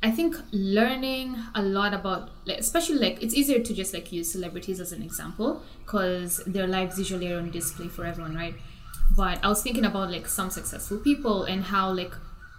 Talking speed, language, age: 190 wpm, English, 10-29